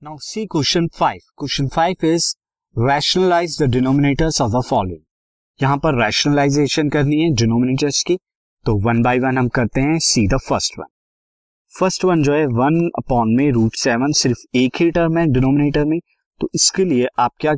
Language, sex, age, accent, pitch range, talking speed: Hindi, male, 20-39, native, 115-150 Hz, 40 wpm